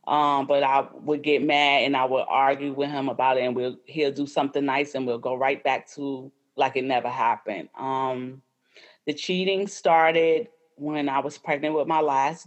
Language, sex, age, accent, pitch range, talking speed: English, female, 30-49, American, 130-155 Hz, 195 wpm